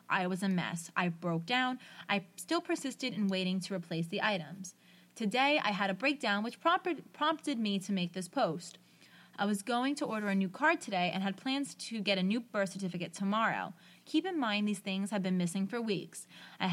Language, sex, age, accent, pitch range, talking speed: English, female, 20-39, American, 190-275 Hz, 210 wpm